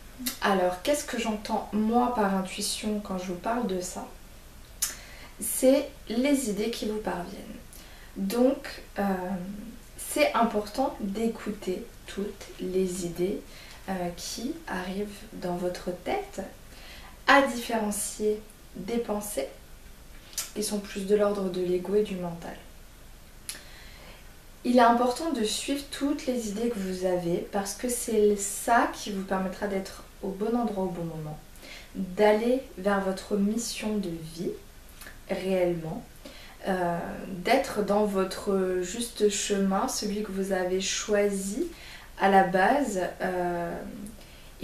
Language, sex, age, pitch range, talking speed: French, female, 20-39, 185-230 Hz, 125 wpm